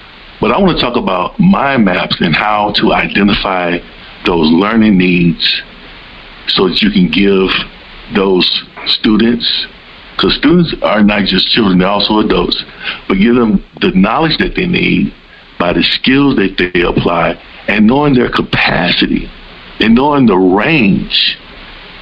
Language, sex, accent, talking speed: English, male, American, 145 wpm